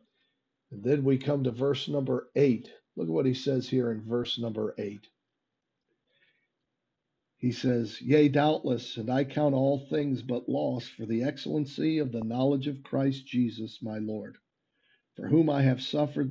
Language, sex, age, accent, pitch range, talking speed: English, male, 50-69, American, 120-145 Hz, 165 wpm